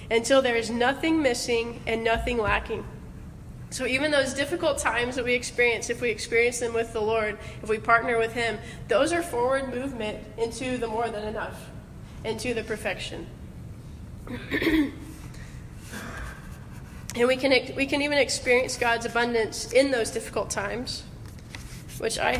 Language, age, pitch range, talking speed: English, 20-39, 225-255 Hz, 140 wpm